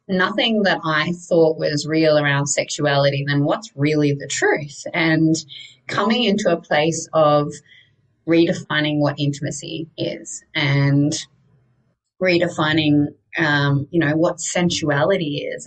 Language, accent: English, Australian